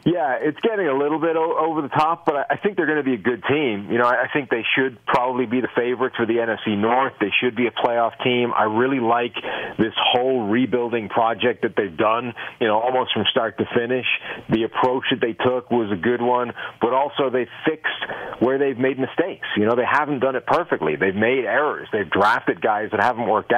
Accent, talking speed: American, 225 wpm